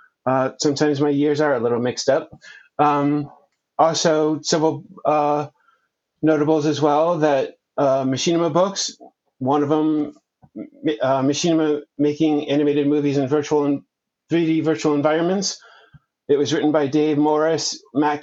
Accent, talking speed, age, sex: American, 130 wpm, 30-49, male